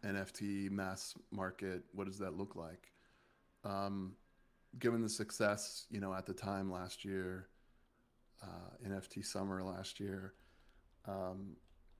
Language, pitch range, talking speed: English, 95-105 Hz, 125 wpm